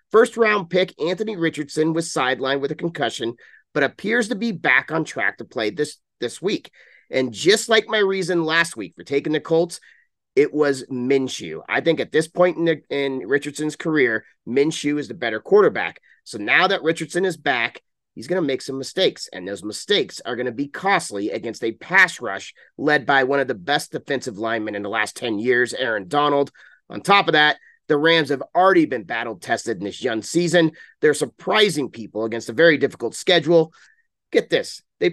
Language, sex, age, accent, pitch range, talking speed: English, male, 30-49, American, 135-185 Hz, 195 wpm